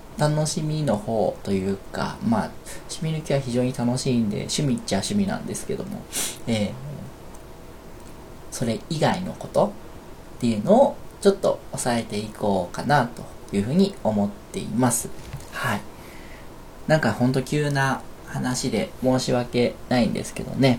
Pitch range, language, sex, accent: 120-185 Hz, Japanese, male, native